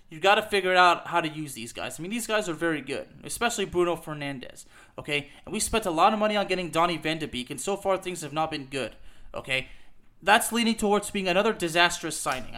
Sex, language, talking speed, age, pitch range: male, English, 235 wpm, 30-49, 165-210 Hz